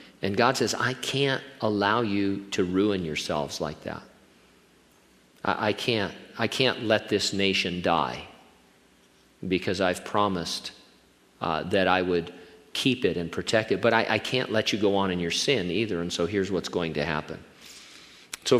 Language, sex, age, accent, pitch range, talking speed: English, male, 50-69, American, 105-135 Hz, 170 wpm